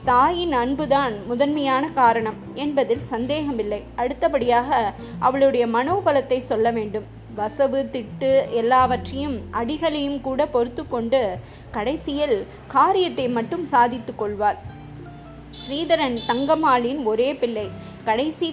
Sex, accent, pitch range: female, native, 235-290 Hz